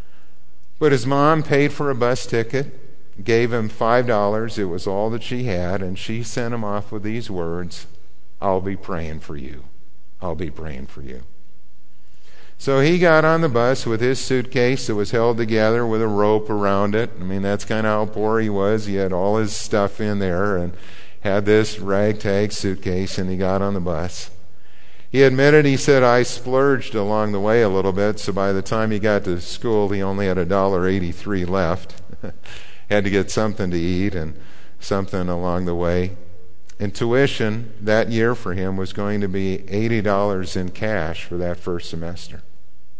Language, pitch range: English, 90-115 Hz